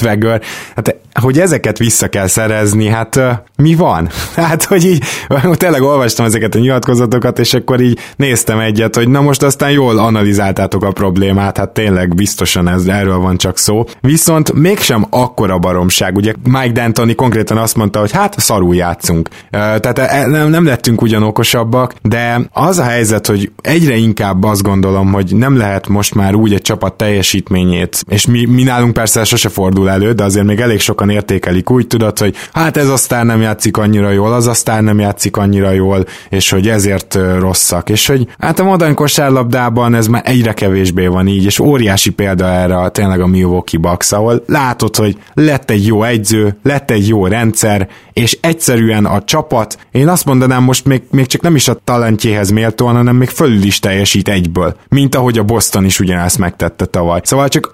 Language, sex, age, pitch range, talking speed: Hungarian, male, 20-39, 100-130 Hz, 180 wpm